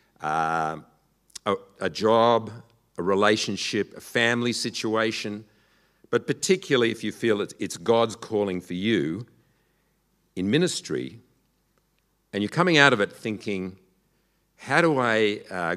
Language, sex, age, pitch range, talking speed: English, male, 50-69, 95-130 Hz, 125 wpm